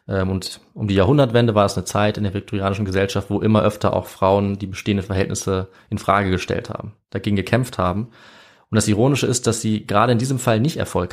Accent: German